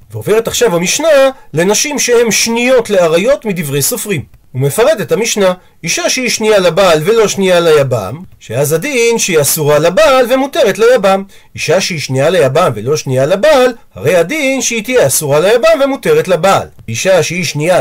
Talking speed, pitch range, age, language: 150 wpm, 165-245 Hz, 40-59, Hebrew